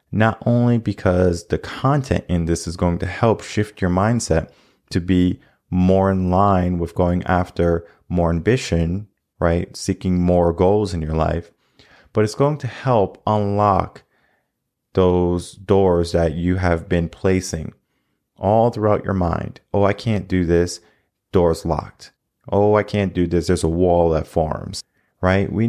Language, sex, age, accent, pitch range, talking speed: English, male, 30-49, American, 90-115 Hz, 155 wpm